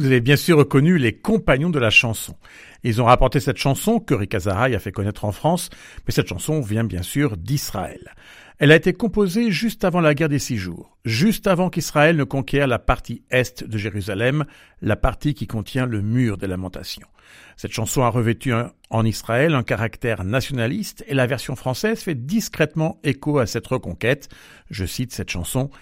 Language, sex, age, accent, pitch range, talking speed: French, male, 50-69, French, 100-145 Hz, 190 wpm